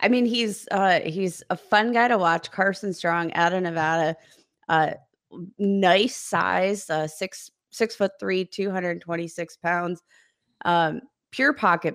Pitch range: 165-200 Hz